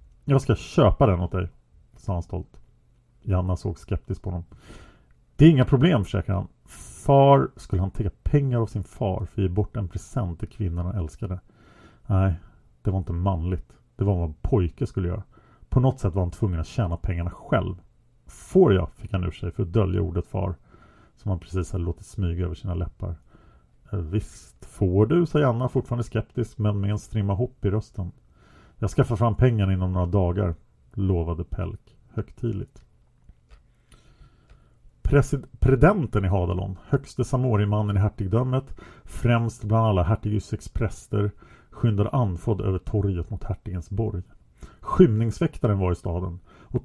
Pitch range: 90-115 Hz